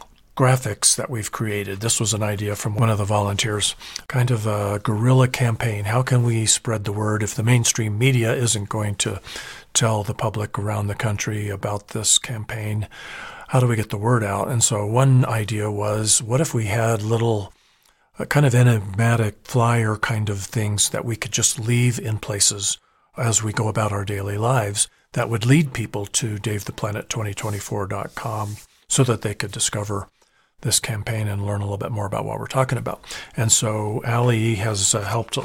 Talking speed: 180 wpm